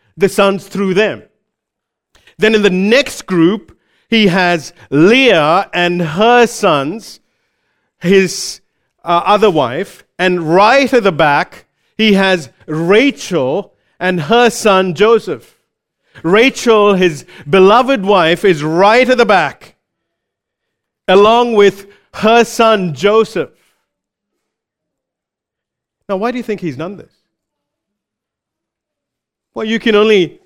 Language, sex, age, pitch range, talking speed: English, male, 50-69, 180-225 Hz, 110 wpm